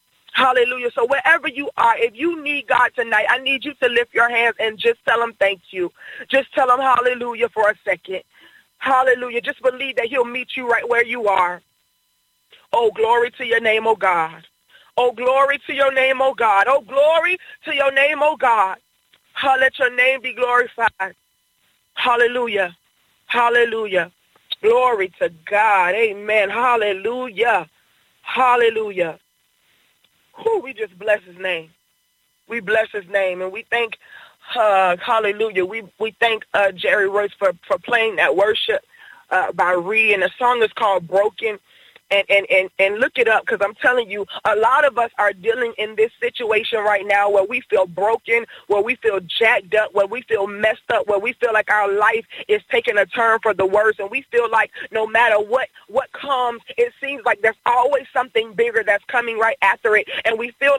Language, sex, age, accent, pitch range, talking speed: English, female, 20-39, American, 215-275 Hz, 180 wpm